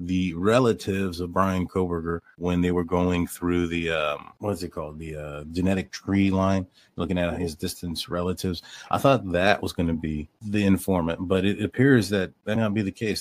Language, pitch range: English, 85-95 Hz